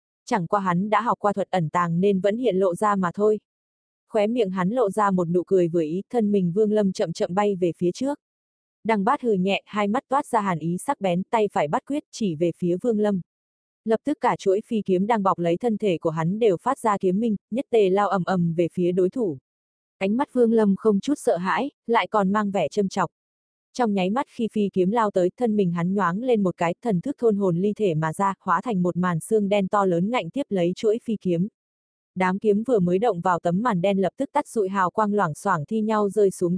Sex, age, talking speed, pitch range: female, 20-39, 255 wpm, 180-220 Hz